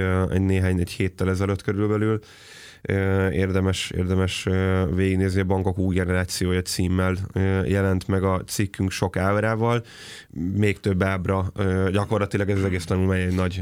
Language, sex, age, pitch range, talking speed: Hungarian, male, 20-39, 95-105 Hz, 130 wpm